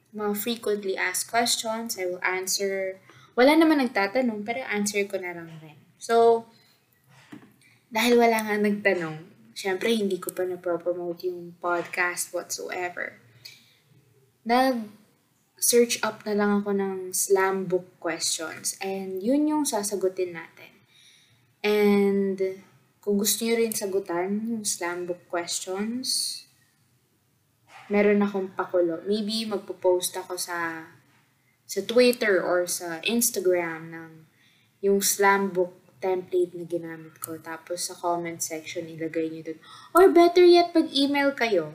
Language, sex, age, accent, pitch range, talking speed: Filipino, female, 20-39, native, 170-220 Hz, 130 wpm